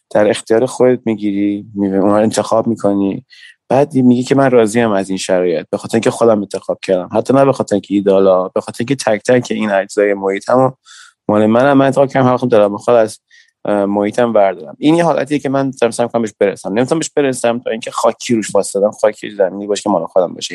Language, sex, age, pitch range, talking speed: Persian, male, 30-49, 100-125 Hz, 205 wpm